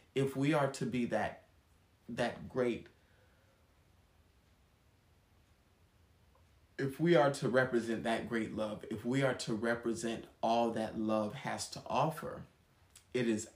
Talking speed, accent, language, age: 130 wpm, American, English, 30-49